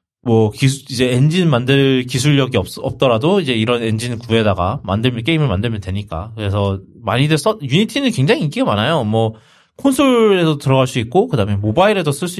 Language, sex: Korean, male